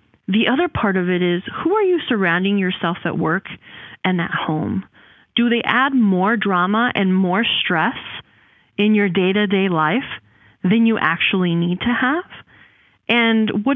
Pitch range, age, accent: 180-230 Hz, 30-49, American